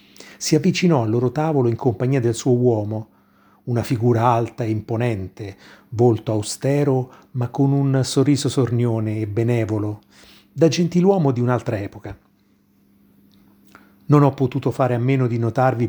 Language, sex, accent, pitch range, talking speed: Italian, male, native, 105-135 Hz, 140 wpm